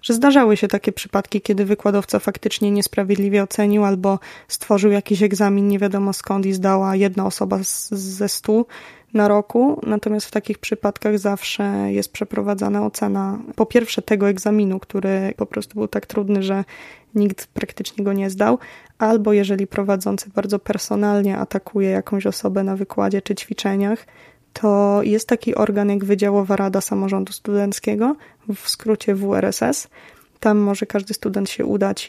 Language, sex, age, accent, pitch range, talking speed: Polish, female, 20-39, native, 200-220 Hz, 150 wpm